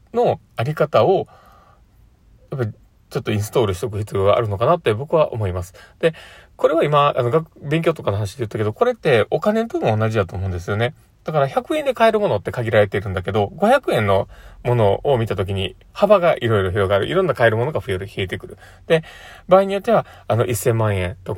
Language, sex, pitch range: Japanese, male, 100-155 Hz